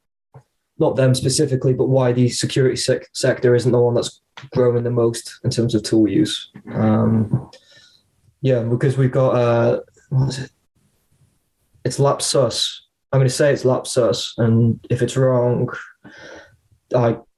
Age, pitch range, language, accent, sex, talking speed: 20-39, 120-130 Hz, English, British, male, 145 wpm